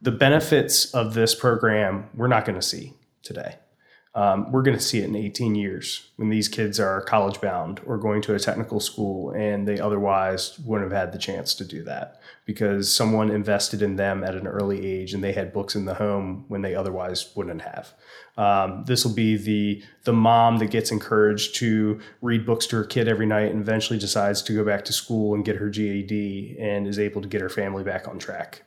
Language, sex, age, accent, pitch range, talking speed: English, male, 20-39, American, 100-115 Hz, 220 wpm